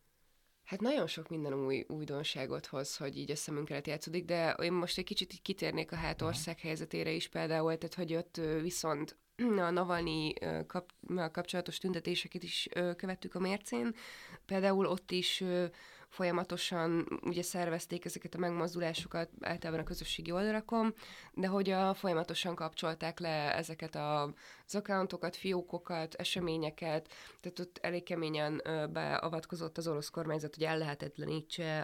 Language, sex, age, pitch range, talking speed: Hungarian, female, 20-39, 155-180 Hz, 130 wpm